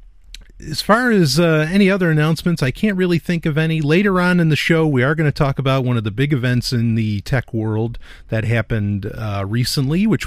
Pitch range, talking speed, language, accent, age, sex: 110-145 Hz, 220 wpm, English, American, 40-59, male